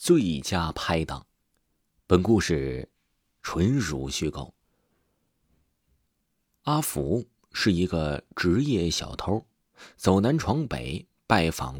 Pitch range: 80-130 Hz